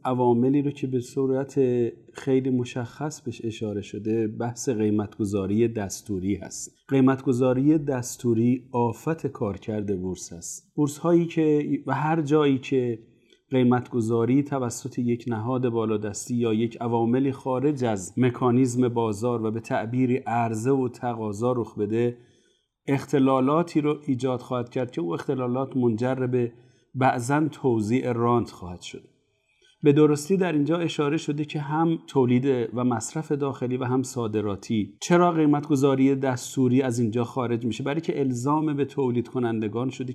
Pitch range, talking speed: 115-140 Hz, 135 wpm